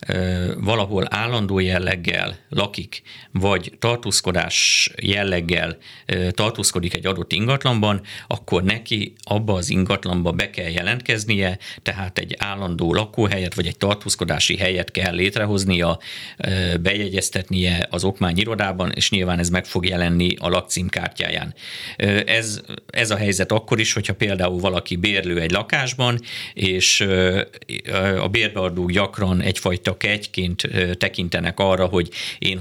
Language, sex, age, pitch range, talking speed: Hungarian, male, 50-69, 90-105 Hz, 115 wpm